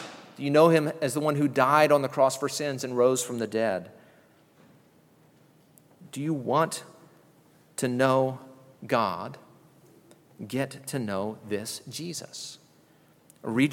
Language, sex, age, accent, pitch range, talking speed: English, male, 40-59, American, 115-155 Hz, 135 wpm